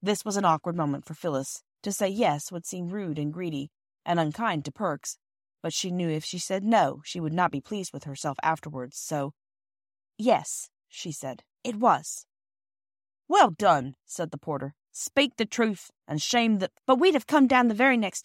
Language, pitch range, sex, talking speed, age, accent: English, 145-200 Hz, female, 195 wpm, 30-49, American